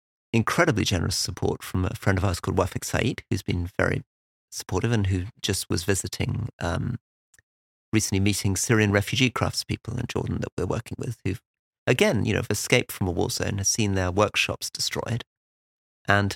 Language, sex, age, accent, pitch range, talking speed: English, male, 40-59, British, 95-120 Hz, 175 wpm